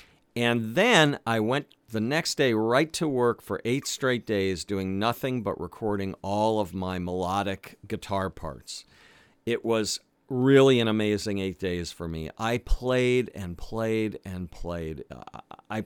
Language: English